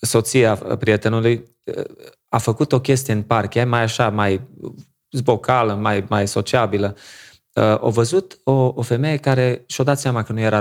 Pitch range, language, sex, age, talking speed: 110-140 Hz, Romanian, male, 30-49, 165 wpm